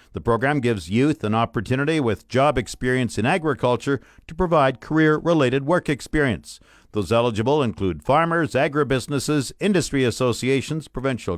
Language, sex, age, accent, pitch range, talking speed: English, male, 50-69, American, 115-150 Hz, 125 wpm